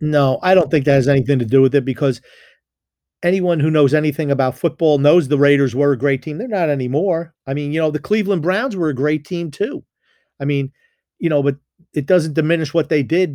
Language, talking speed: English, 230 wpm